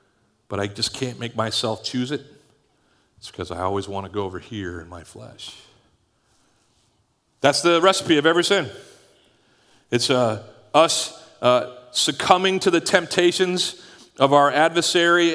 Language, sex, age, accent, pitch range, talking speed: English, male, 40-59, American, 115-155 Hz, 145 wpm